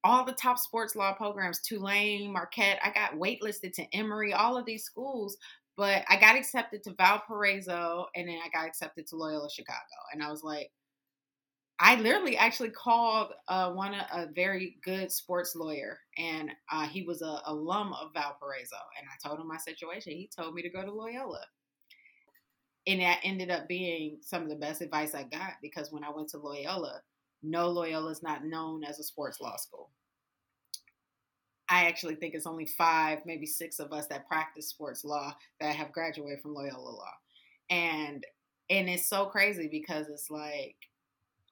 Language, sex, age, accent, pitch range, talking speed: English, female, 30-49, American, 155-190 Hz, 180 wpm